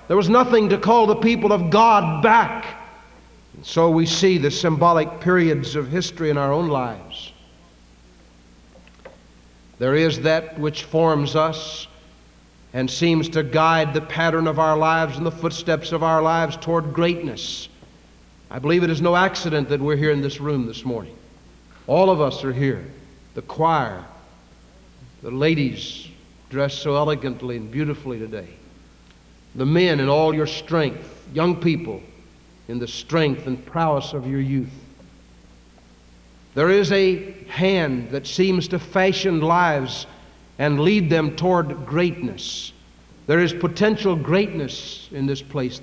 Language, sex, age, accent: English, male, 60-79, American